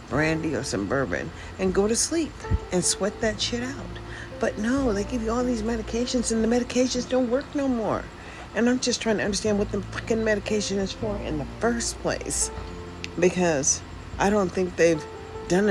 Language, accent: English, American